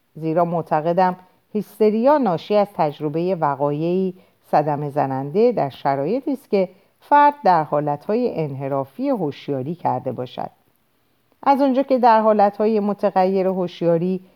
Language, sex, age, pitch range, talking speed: Persian, female, 50-69, 150-220 Hz, 115 wpm